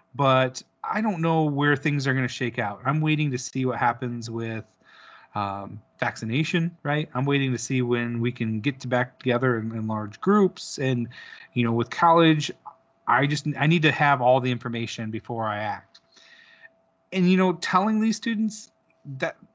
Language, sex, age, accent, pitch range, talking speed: English, male, 30-49, American, 125-165 Hz, 185 wpm